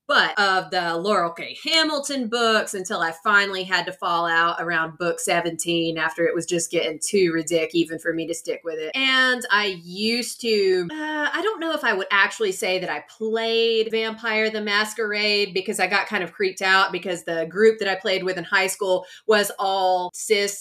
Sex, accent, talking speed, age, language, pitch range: female, American, 200 wpm, 20-39, English, 175-220 Hz